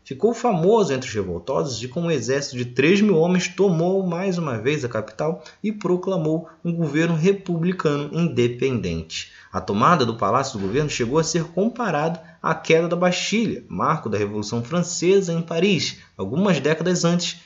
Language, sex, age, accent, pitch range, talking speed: Portuguese, male, 20-39, Brazilian, 150-190 Hz, 165 wpm